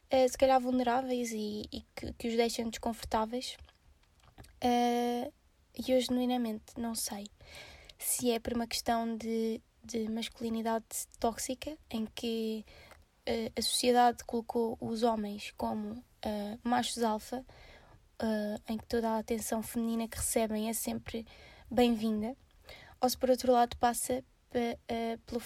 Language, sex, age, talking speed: Portuguese, female, 20-39, 125 wpm